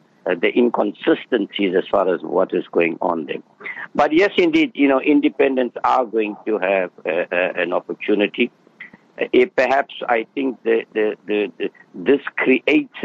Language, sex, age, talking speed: English, male, 60-79, 145 wpm